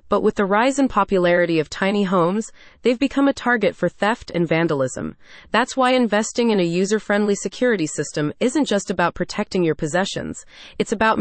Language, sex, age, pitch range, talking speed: English, female, 30-49, 170-240 Hz, 175 wpm